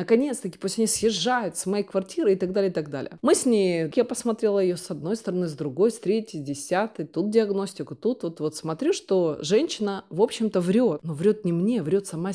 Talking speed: 225 wpm